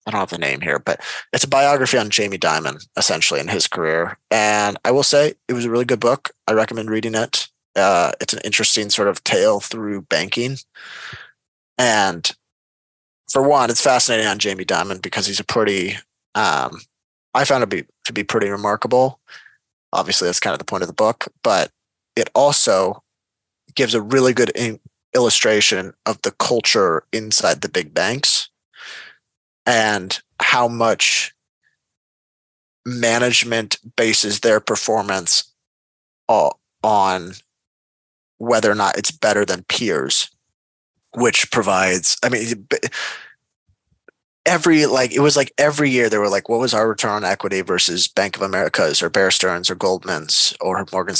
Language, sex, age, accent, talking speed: English, male, 20-39, American, 155 wpm